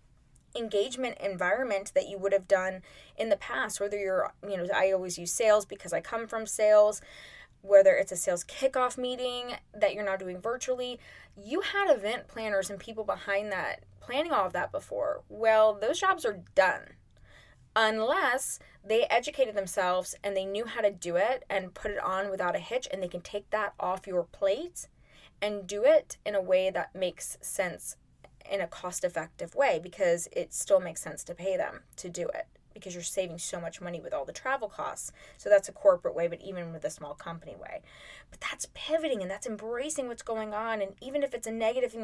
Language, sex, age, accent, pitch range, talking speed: English, female, 20-39, American, 195-260 Hz, 205 wpm